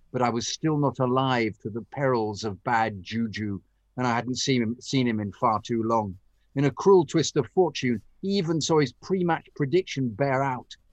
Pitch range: 110-135 Hz